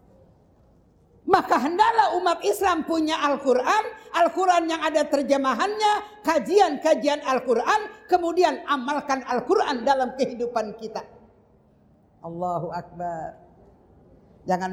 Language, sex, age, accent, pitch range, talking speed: Indonesian, female, 50-69, native, 185-235 Hz, 85 wpm